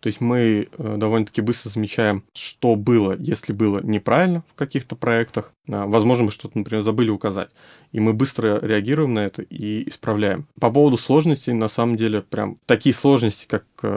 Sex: male